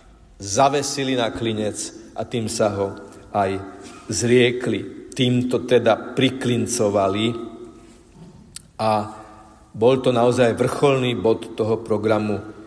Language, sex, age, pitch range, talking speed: Slovak, male, 50-69, 105-130 Hz, 95 wpm